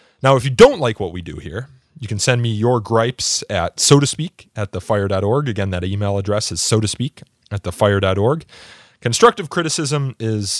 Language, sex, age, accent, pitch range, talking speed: English, male, 30-49, American, 105-145 Hz, 205 wpm